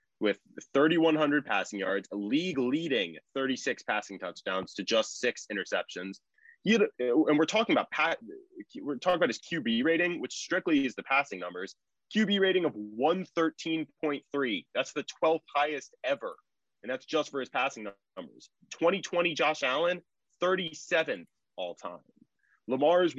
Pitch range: 120-170 Hz